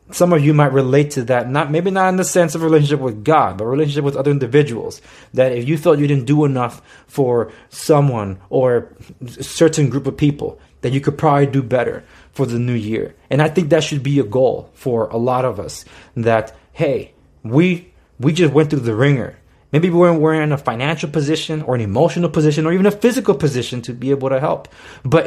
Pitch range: 130-165 Hz